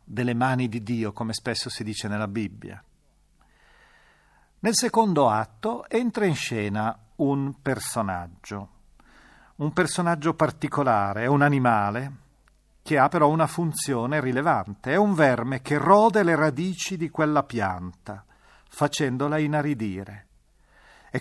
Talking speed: 120 wpm